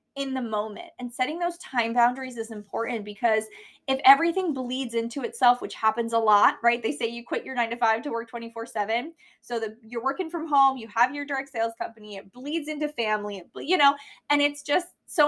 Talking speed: 225 wpm